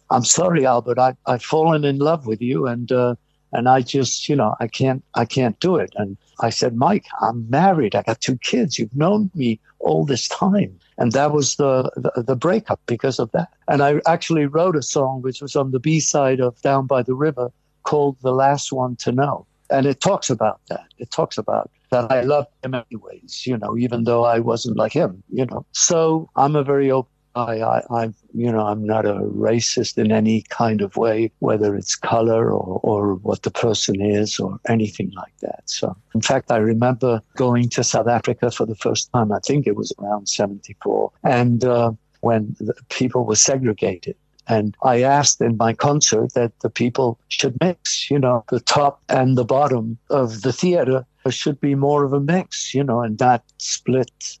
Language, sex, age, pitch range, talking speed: English, male, 60-79, 115-140 Hz, 200 wpm